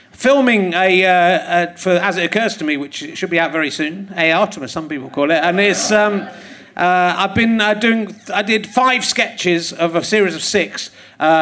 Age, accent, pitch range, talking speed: 40-59, British, 165-220 Hz, 210 wpm